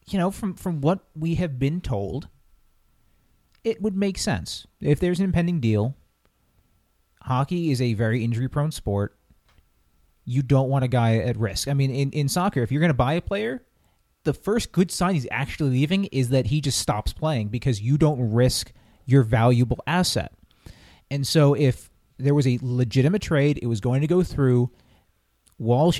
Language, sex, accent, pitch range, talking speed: English, male, American, 120-160 Hz, 180 wpm